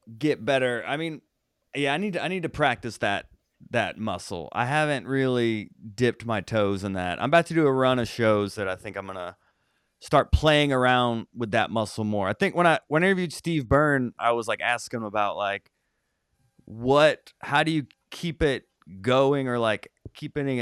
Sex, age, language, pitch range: male, 20-39, English, 115-155 Hz